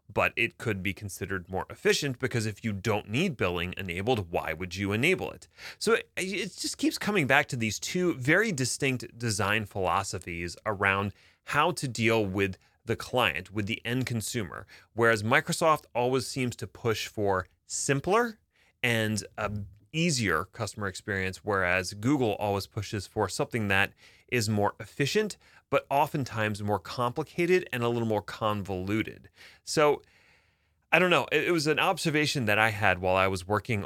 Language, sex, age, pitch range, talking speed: English, male, 30-49, 95-130 Hz, 160 wpm